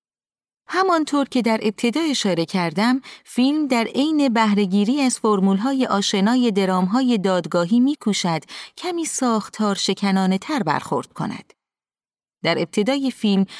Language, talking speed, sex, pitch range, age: Persian, 105 wpm, female, 195-275 Hz, 30-49